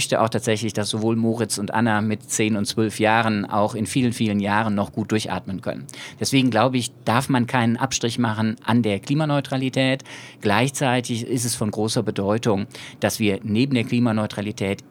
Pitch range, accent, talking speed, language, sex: 105-125 Hz, German, 180 wpm, English, male